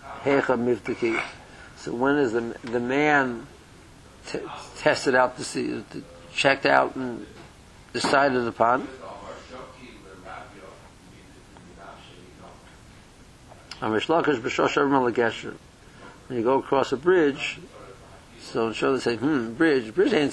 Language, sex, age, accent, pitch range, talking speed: English, male, 60-79, American, 120-145 Hz, 90 wpm